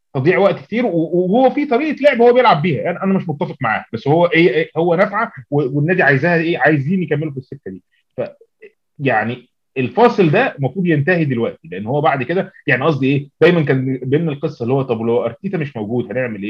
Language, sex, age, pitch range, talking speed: Arabic, male, 30-49, 130-190 Hz, 205 wpm